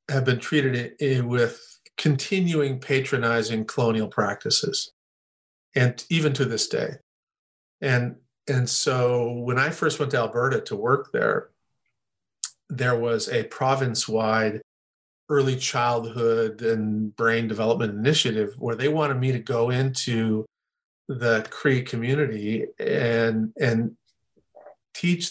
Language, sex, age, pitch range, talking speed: English, male, 50-69, 115-150 Hz, 115 wpm